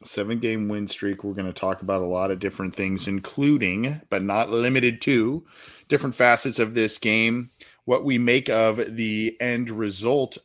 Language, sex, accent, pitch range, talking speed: English, male, American, 100-115 Hz, 180 wpm